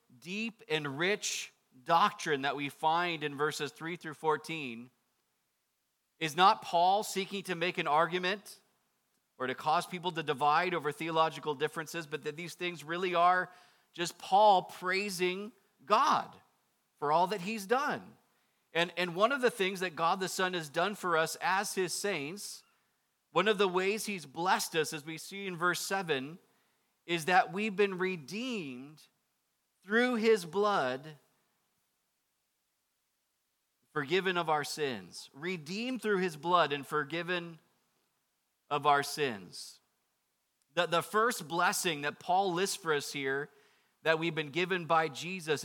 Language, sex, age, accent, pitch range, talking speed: English, male, 40-59, American, 155-205 Hz, 145 wpm